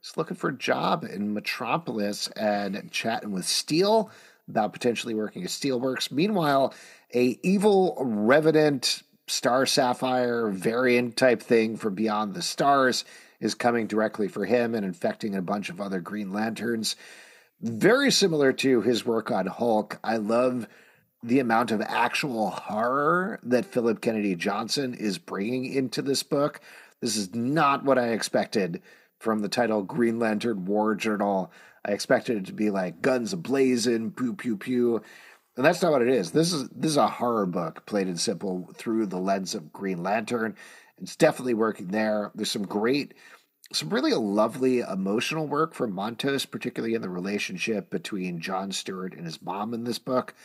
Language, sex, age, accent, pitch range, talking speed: English, male, 40-59, American, 105-130 Hz, 165 wpm